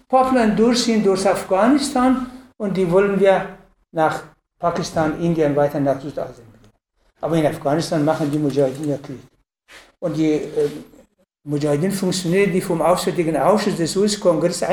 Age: 60-79